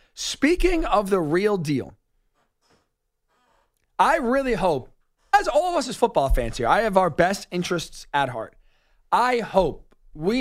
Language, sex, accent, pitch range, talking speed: English, male, American, 150-205 Hz, 150 wpm